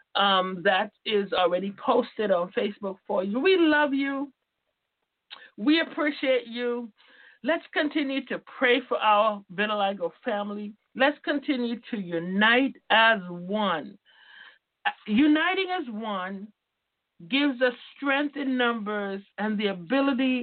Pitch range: 195-270 Hz